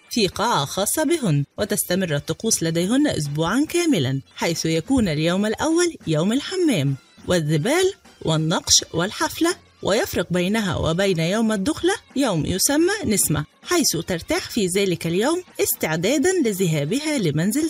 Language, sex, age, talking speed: Arabic, female, 30-49, 115 wpm